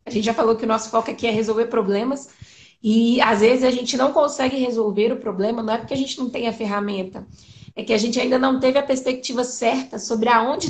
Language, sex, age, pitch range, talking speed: Portuguese, female, 20-39, 220-265 Hz, 240 wpm